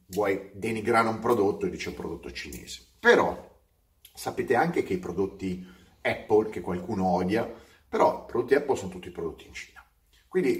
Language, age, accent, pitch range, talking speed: Italian, 30-49, native, 95-140 Hz, 165 wpm